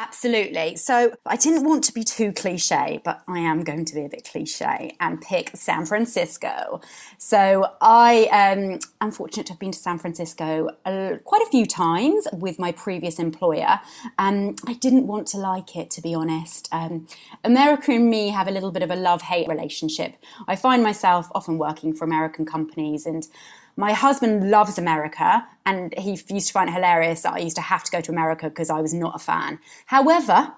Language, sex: English, female